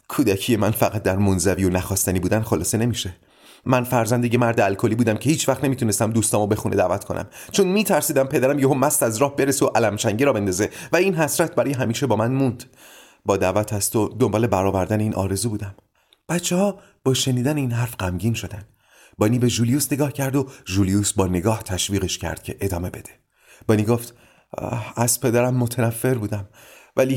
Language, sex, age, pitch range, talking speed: Persian, male, 30-49, 105-135 Hz, 180 wpm